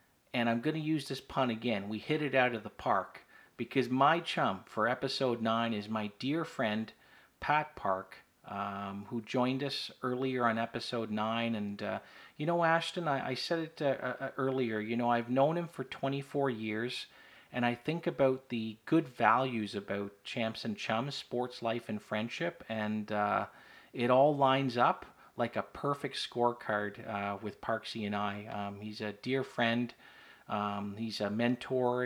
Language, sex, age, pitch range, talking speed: English, male, 40-59, 110-135 Hz, 175 wpm